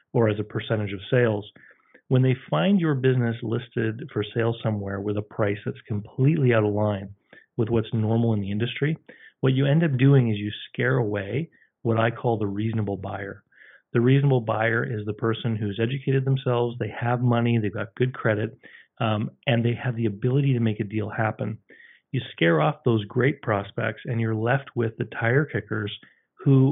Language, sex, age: English, male, 40-59